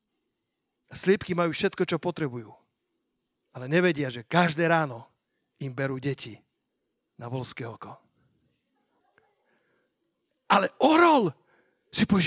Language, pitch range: Slovak, 155-220 Hz